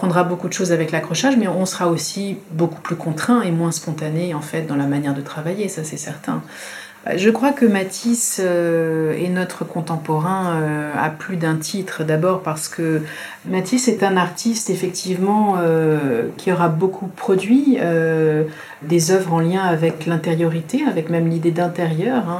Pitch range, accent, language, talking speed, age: 160-190 Hz, French, French, 165 wpm, 40-59